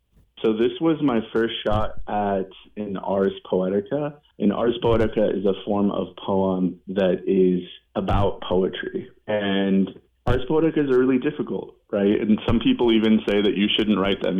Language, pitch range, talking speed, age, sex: English, 95-110 Hz, 165 wpm, 30-49, male